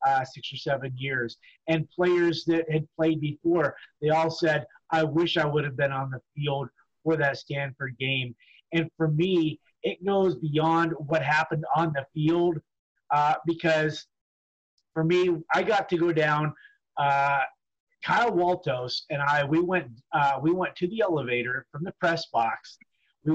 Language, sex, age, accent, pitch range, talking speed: English, male, 30-49, American, 150-175 Hz, 165 wpm